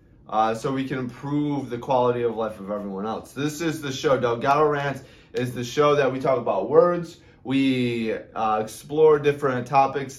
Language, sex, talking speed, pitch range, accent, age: English, male, 185 wpm, 120-150 Hz, American, 20-39